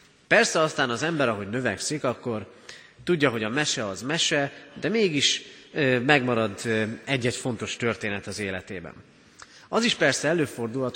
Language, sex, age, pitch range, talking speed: Hungarian, male, 30-49, 105-150 Hz, 135 wpm